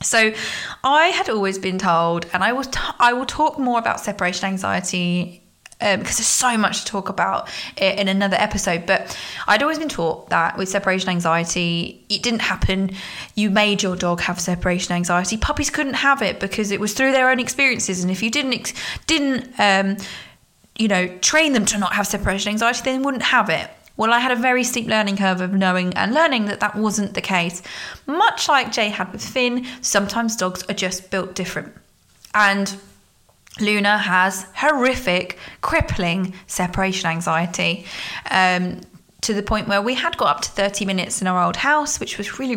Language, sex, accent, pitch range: English, female, British, 185-235 Hz